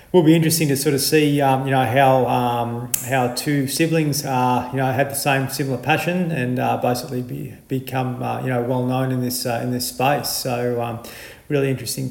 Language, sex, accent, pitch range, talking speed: English, male, Australian, 125-140 Hz, 220 wpm